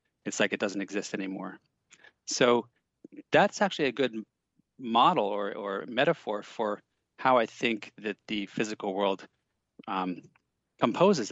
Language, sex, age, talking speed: English, male, 30-49, 135 wpm